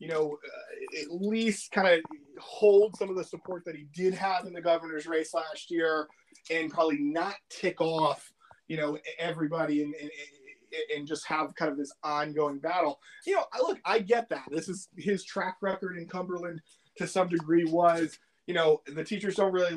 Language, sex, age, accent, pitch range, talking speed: English, male, 20-39, American, 160-215 Hz, 195 wpm